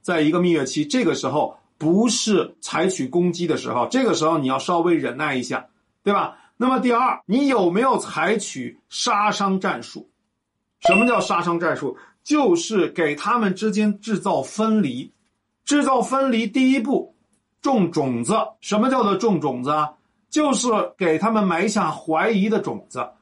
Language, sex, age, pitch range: Chinese, male, 50-69, 170-235 Hz